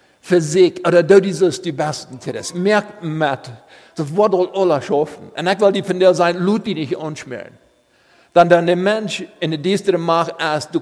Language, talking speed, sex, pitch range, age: English, 195 wpm, male, 140-180 Hz, 50-69